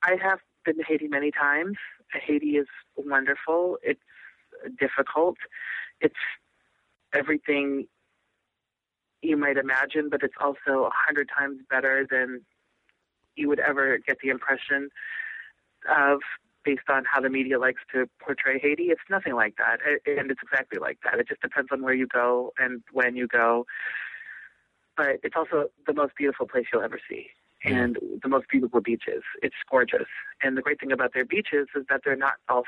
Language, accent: English, American